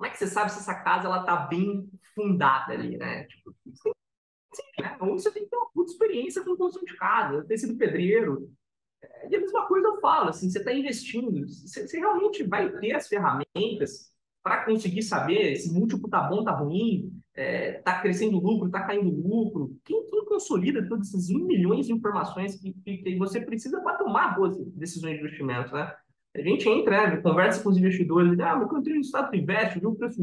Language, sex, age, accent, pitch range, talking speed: Portuguese, male, 20-39, Brazilian, 185-300 Hz, 220 wpm